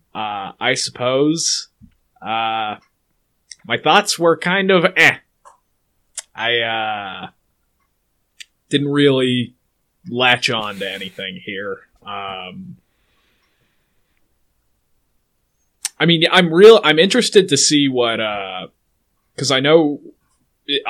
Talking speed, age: 100 wpm, 20-39